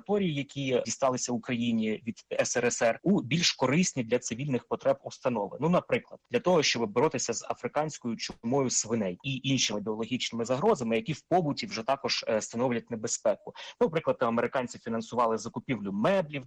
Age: 20-39